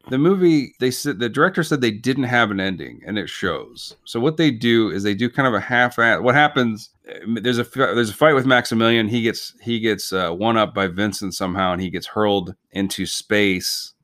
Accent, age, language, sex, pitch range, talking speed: American, 30-49, English, male, 95-125 Hz, 220 wpm